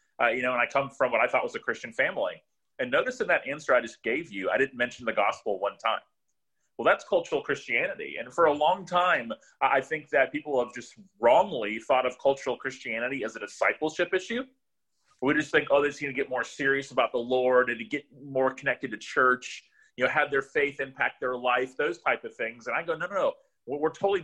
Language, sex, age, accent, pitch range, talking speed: English, male, 30-49, American, 125-175 Hz, 235 wpm